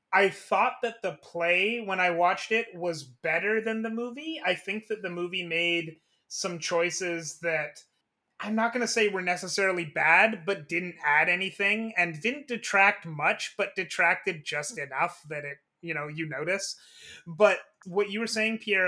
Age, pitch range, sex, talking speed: 30-49, 165-205 Hz, male, 175 wpm